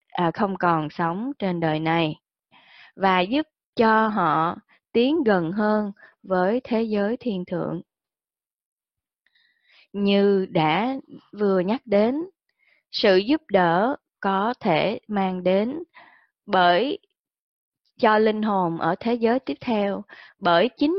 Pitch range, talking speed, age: 180-235 Hz, 120 wpm, 20-39